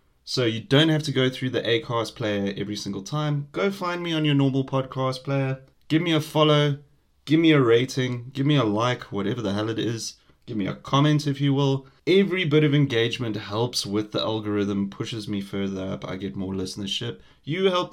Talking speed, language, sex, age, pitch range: 210 wpm, English, male, 20-39, 100-140 Hz